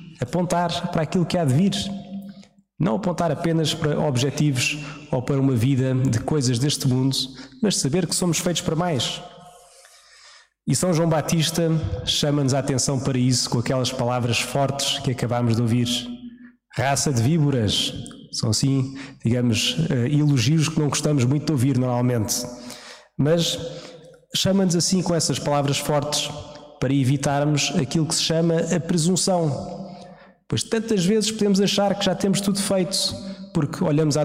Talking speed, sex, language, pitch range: 150 wpm, male, Portuguese, 140-180 Hz